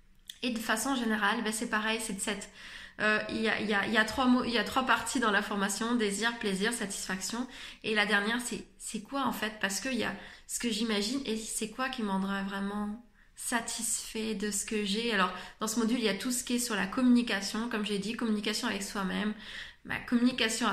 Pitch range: 210-245 Hz